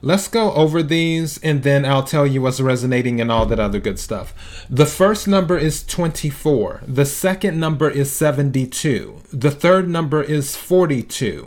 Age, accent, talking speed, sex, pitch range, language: 40-59, American, 165 wpm, male, 125-165 Hz, English